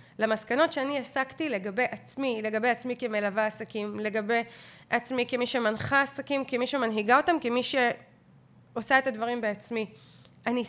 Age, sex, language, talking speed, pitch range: 30-49, female, Hebrew, 130 wpm, 245-330 Hz